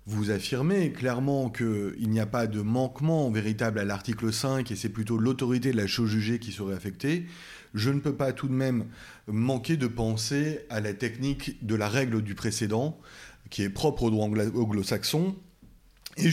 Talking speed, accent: 180 wpm, French